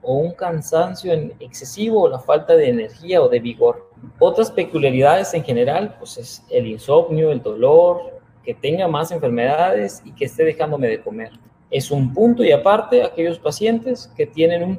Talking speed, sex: 170 wpm, male